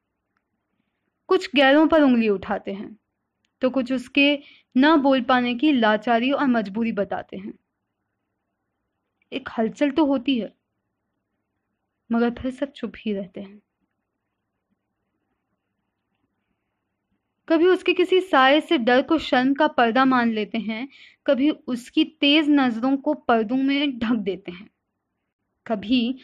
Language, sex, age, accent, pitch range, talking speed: Hindi, female, 20-39, native, 225-285 Hz, 125 wpm